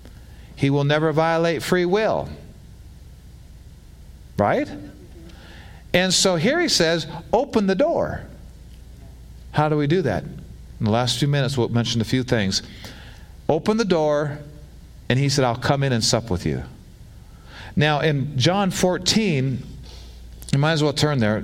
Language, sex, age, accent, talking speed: English, male, 40-59, American, 150 wpm